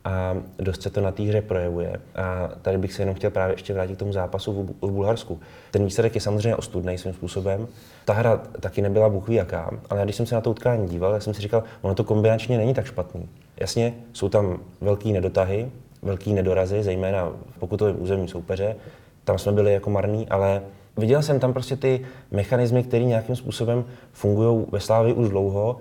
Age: 20-39